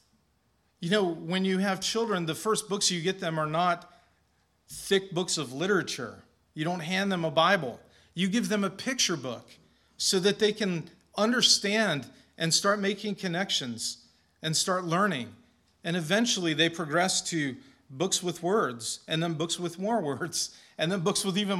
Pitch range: 165-210 Hz